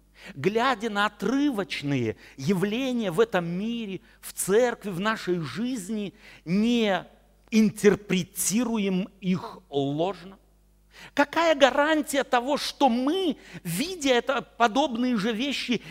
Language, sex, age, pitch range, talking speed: Russian, male, 50-69, 165-235 Hz, 95 wpm